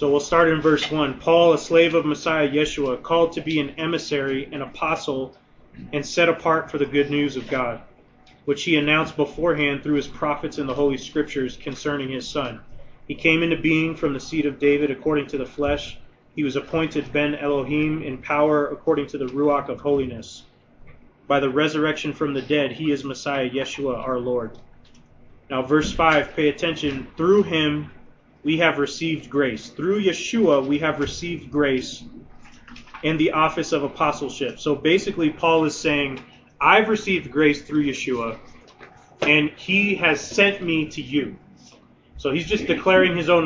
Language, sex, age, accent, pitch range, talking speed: English, male, 30-49, American, 140-165 Hz, 175 wpm